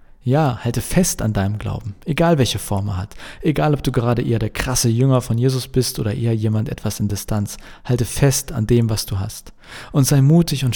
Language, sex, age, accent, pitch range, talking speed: German, male, 40-59, German, 110-135 Hz, 220 wpm